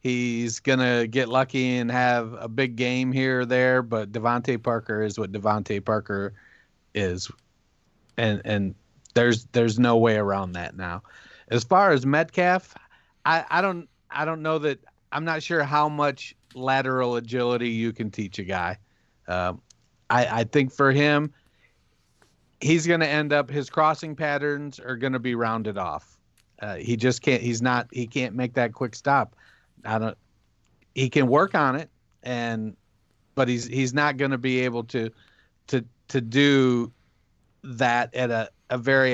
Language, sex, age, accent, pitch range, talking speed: English, male, 40-59, American, 110-135 Hz, 175 wpm